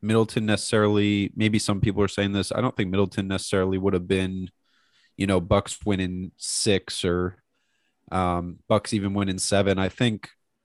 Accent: American